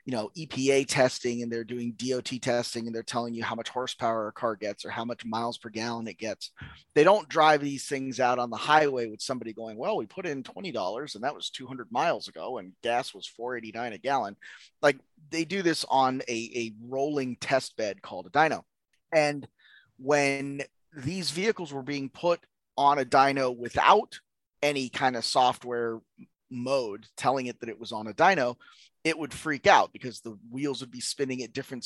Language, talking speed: English, 205 wpm